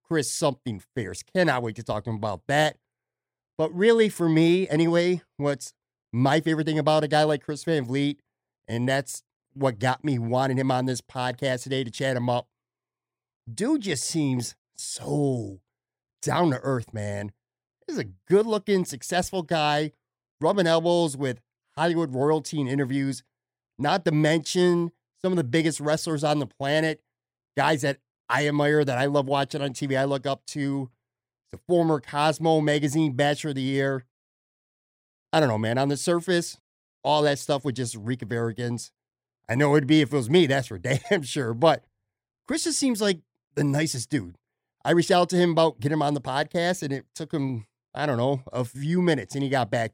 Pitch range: 125-160 Hz